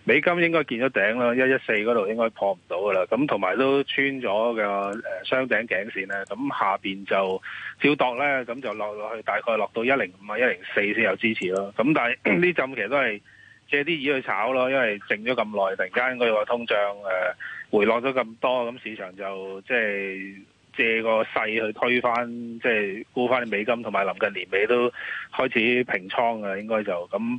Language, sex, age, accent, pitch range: Chinese, male, 20-39, native, 105-130 Hz